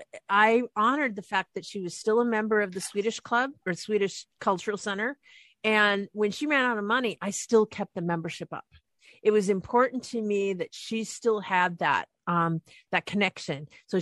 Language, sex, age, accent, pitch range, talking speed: English, female, 50-69, American, 170-220 Hz, 195 wpm